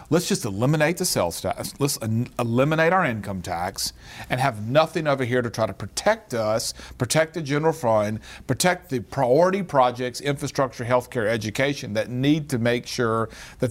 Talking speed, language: 170 wpm, English